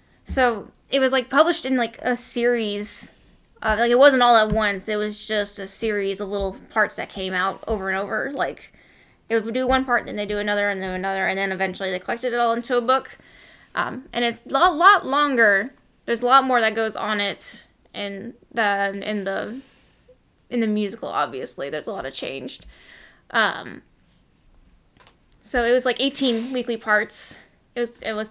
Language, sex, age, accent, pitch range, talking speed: English, female, 10-29, American, 200-240 Hz, 195 wpm